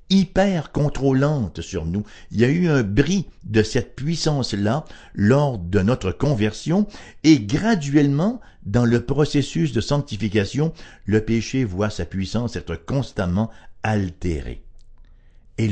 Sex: male